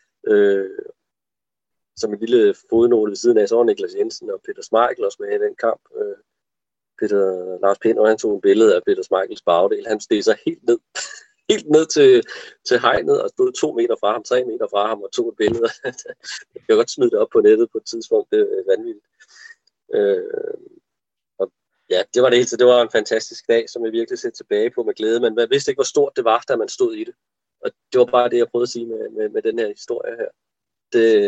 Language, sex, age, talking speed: Danish, male, 30-49, 225 wpm